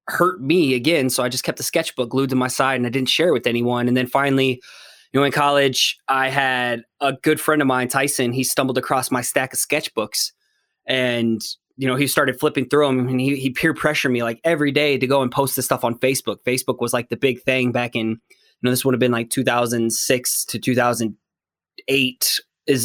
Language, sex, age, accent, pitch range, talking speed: English, male, 20-39, American, 125-145 Hz, 225 wpm